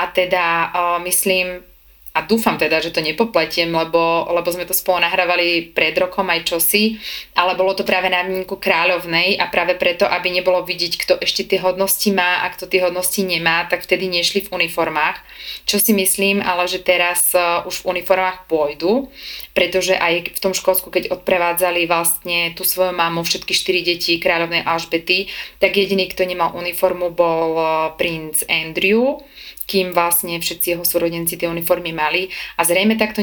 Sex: female